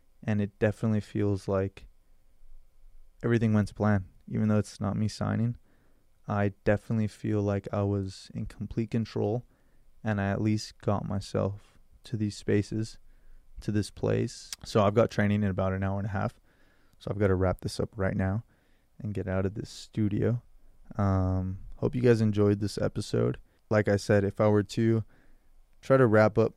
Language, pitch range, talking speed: English, 100-110 Hz, 180 wpm